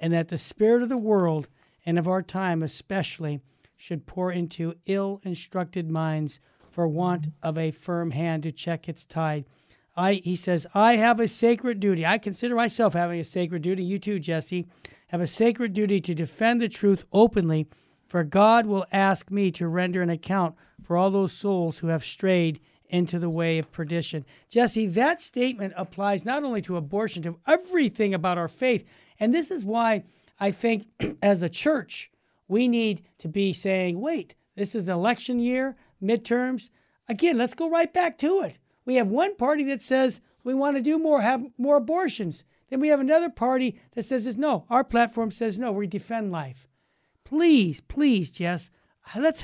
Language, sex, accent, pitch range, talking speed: English, male, American, 170-235 Hz, 180 wpm